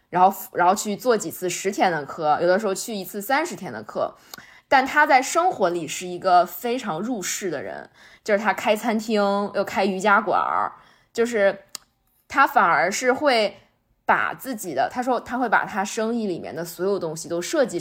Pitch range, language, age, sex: 185-245 Hz, Chinese, 20-39, female